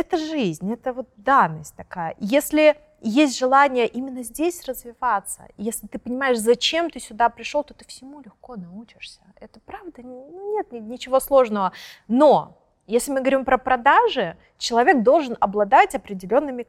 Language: Russian